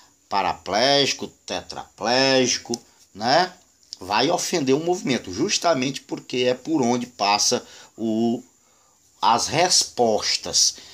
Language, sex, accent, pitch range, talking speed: Portuguese, male, Brazilian, 115-140 Hz, 80 wpm